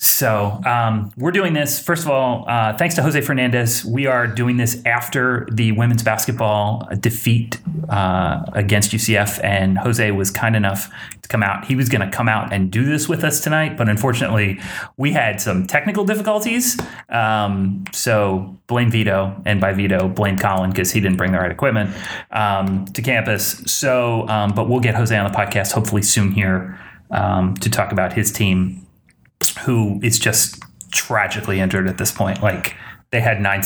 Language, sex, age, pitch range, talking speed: English, male, 30-49, 100-120 Hz, 180 wpm